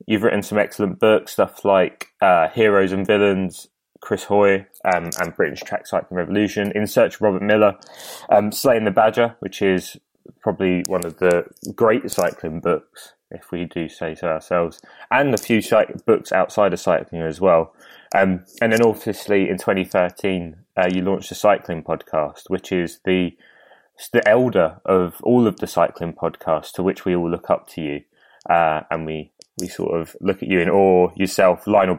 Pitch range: 85-105 Hz